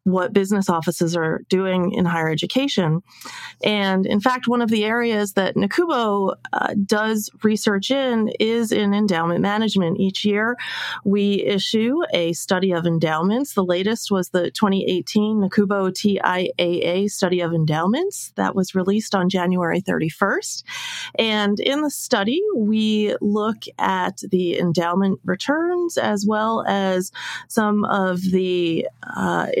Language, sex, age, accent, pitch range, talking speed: English, female, 30-49, American, 185-230 Hz, 135 wpm